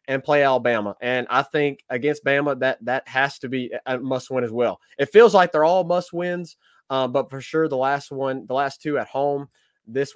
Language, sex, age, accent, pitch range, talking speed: English, male, 20-39, American, 125-145 Hz, 225 wpm